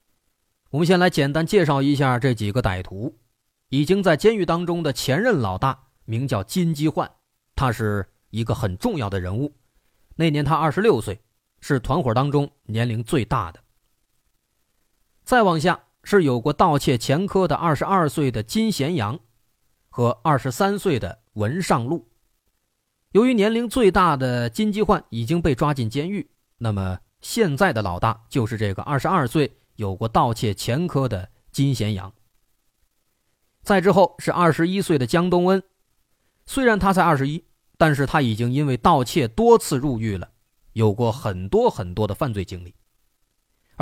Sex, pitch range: male, 110-165 Hz